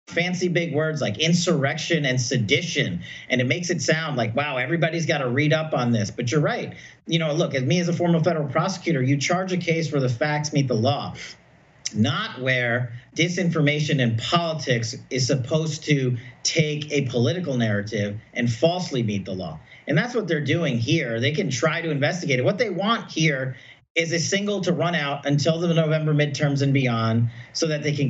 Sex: male